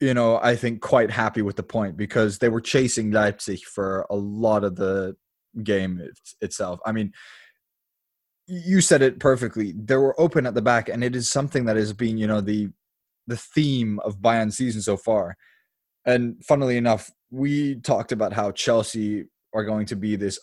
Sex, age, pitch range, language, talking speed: male, 20-39, 105-130 Hz, English, 185 wpm